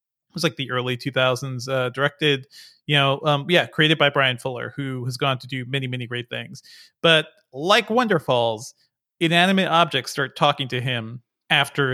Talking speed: 180 wpm